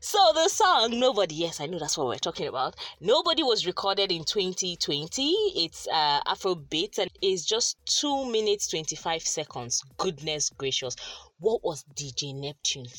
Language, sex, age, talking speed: English, female, 20-39, 155 wpm